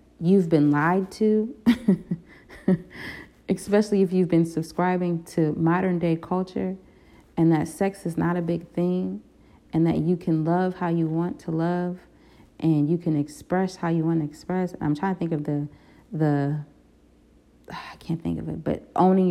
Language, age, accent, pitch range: English, 30-49, American, 150-185 Hz